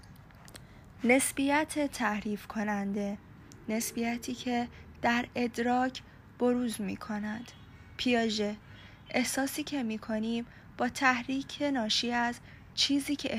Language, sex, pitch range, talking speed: Persian, female, 210-255 Hz, 95 wpm